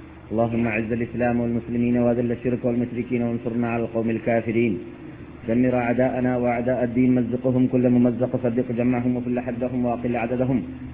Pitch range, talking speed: 115-125 Hz, 130 wpm